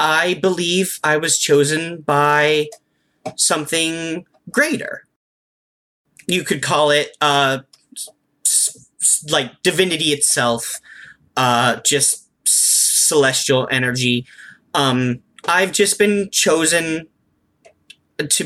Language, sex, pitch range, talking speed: English, male, 130-175 Hz, 85 wpm